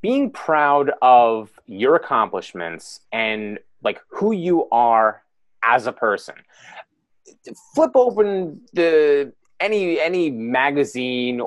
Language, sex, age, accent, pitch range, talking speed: English, male, 30-49, American, 125-175 Hz, 100 wpm